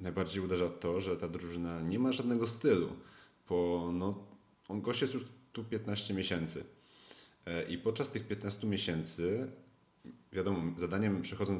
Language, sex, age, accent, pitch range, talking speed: Polish, male, 30-49, native, 90-105 Hz, 135 wpm